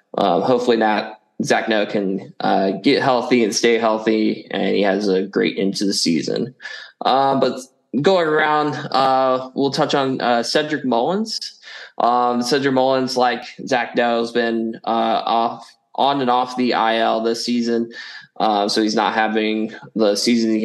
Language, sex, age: English, male, 20-39